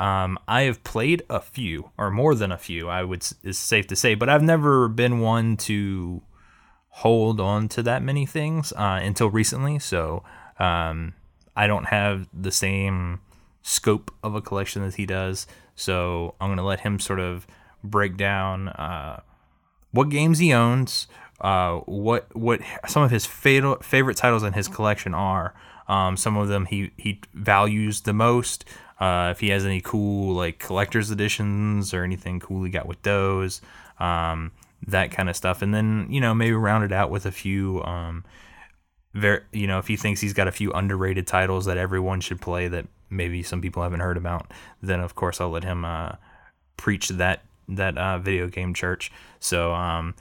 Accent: American